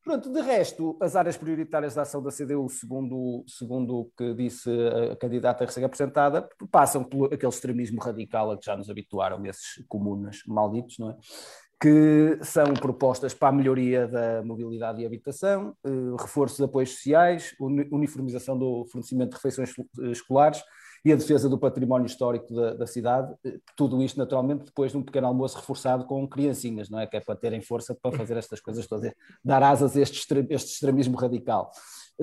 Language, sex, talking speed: Portuguese, male, 170 wpm